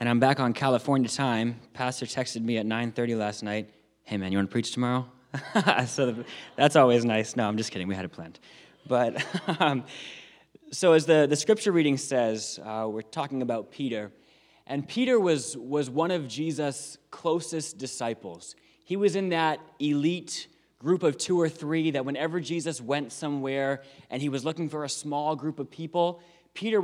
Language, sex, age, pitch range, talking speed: English, male, 20-39, 125-165 Hz, 185 wpm